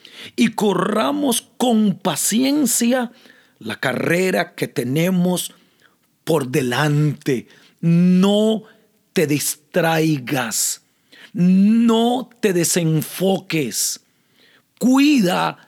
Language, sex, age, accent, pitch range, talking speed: Spanish, male, 40-59, Mexican, 145-225 Hz, 65 wpm